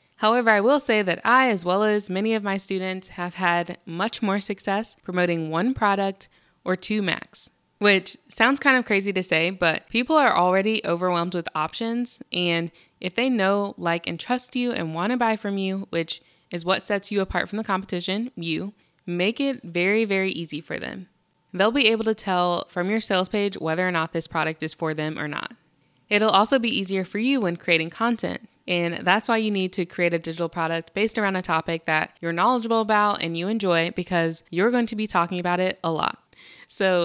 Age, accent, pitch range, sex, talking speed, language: 20-39, American, 170-215 Hz, female, 210 wpm, English